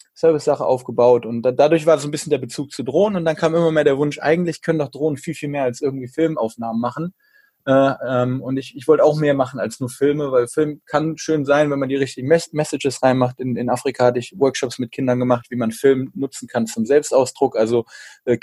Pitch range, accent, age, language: 120-150 Hz, German, 20-39, German